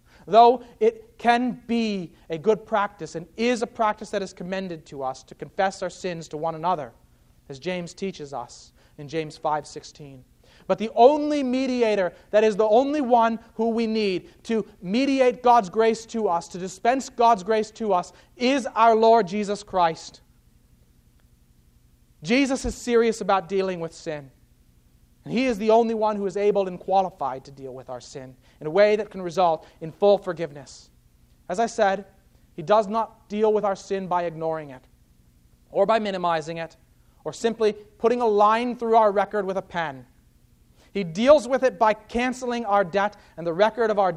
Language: English